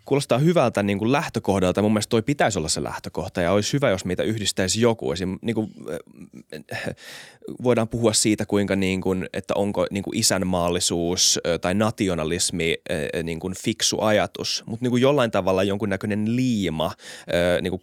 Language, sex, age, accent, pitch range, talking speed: Finnish, male, 20-39, native, 90-115 Hz, 170 wpm